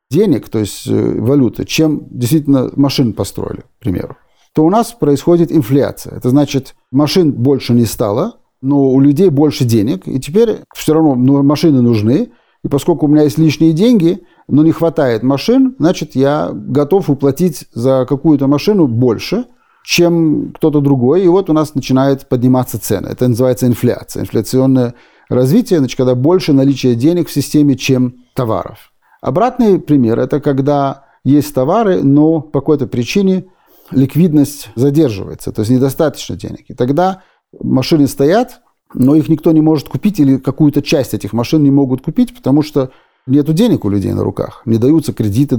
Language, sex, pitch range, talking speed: Russian, male, 130-160 Hz, 160 wpm